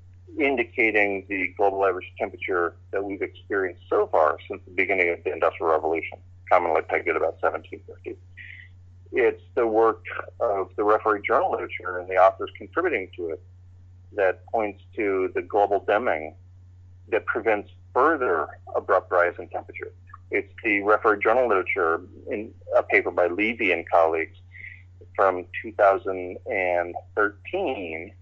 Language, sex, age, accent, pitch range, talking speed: English, male, 30-49, American, 90-100 Hz, 135 wpm